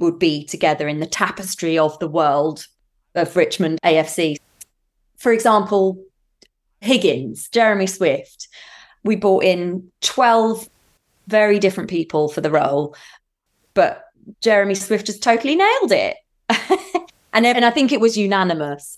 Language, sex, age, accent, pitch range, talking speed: English, female, 20-39, British, 160-215 Hz, 125 wpm